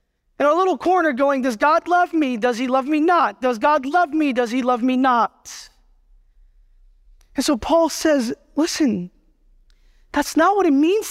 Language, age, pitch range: English, 20-39, 230-295 Hz